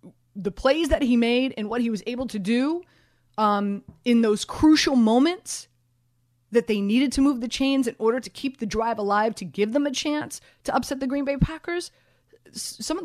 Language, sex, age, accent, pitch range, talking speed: English, female, 30-49, American, 190-255 Hz, 200 wpm